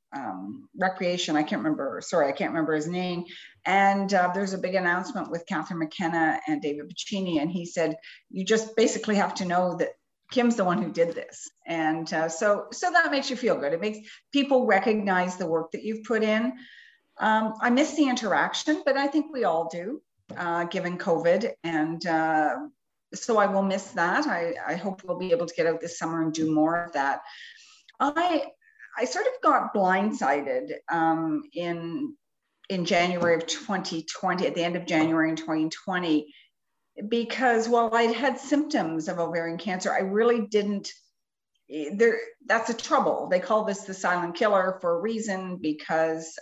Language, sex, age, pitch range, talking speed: English, female, 40-59, 165-230 Hz, 180 wpm